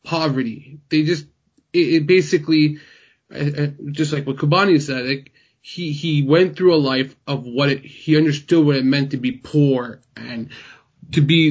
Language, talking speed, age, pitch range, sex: English, 175 wpm, 20-39, 135-155 Hz, male